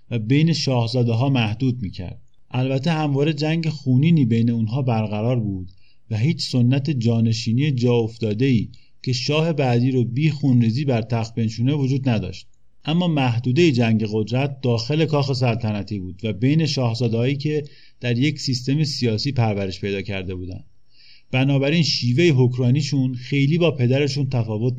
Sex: male